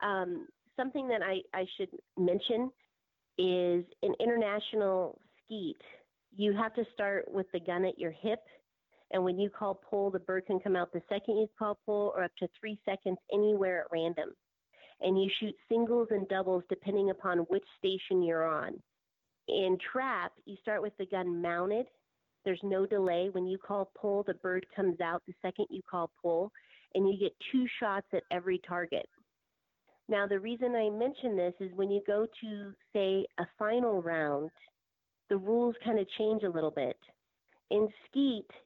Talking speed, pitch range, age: 175 wpm, 185-215 Hz, 40-59